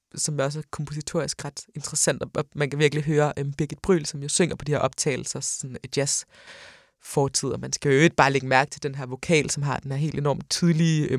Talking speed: 230 wpm